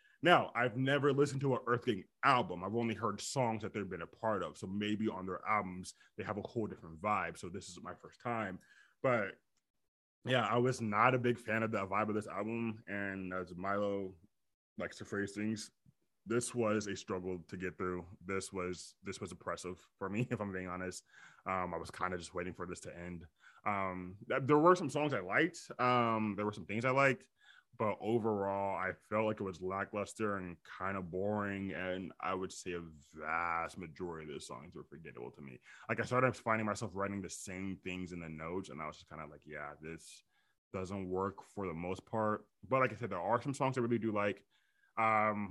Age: 20-39